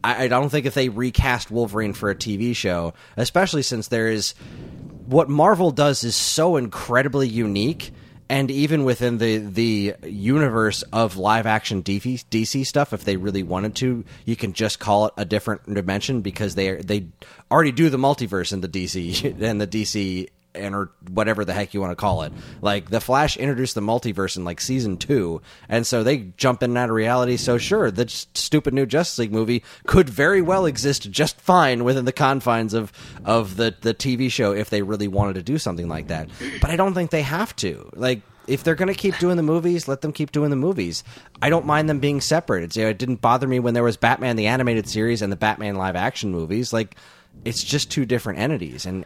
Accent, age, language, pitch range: American, 30-49, English, 100-135 Hz